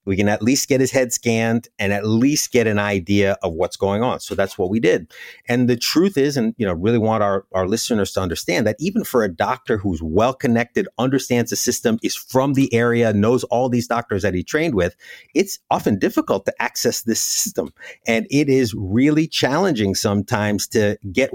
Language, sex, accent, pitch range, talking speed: English, male, American, 105-130 Hz, 210 wpm